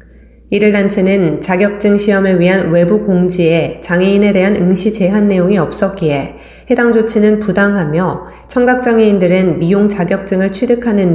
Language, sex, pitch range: Korean, female, 170-205 Hz